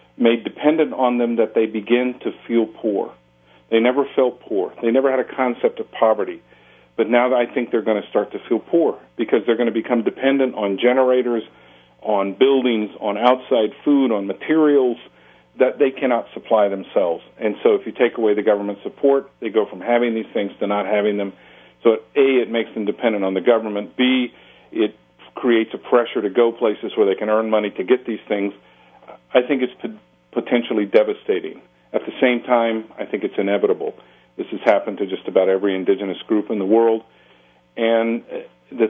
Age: 50-69